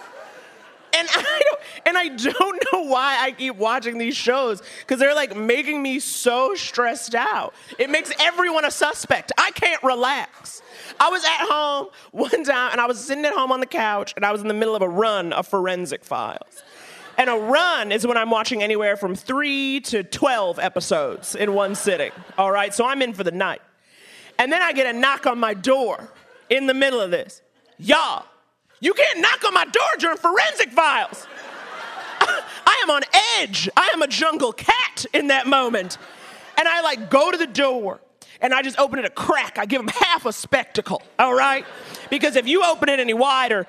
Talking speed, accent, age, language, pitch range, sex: 200 wpm, American, 30-49, English, 230-300 Hz, male